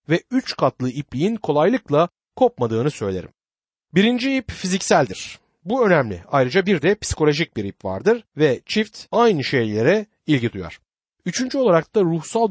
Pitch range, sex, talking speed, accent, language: 125-195 Hz, male, 140 wpm, native, Turkish